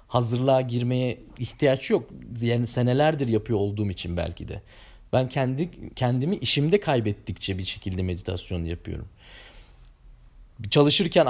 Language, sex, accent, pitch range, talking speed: Turkish, male, native, 115-155 Hz, 110 wpm